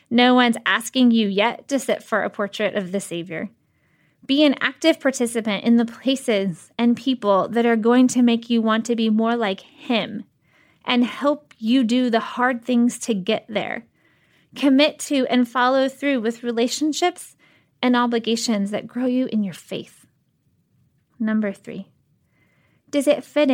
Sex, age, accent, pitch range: female, 20-39, American, 210-260 Hz